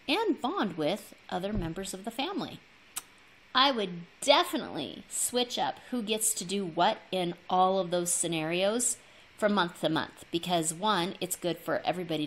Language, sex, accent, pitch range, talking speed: English, female, American, 150-215 Hz, 160 wpm